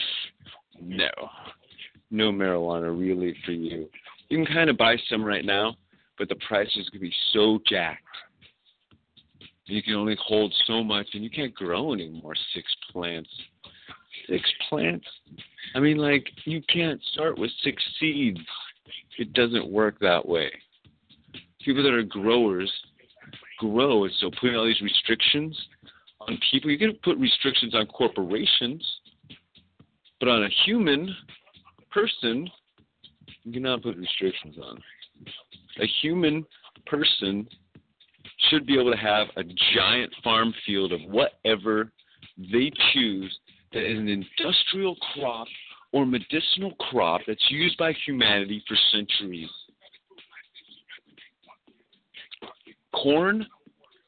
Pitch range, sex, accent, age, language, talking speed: 100-145 Hz, male, American, 50-69, English, 125 wpm